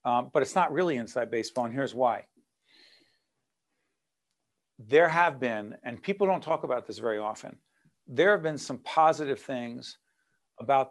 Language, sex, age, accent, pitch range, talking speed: English, male, 50-69, American, 125-160 Hz, 155 wpm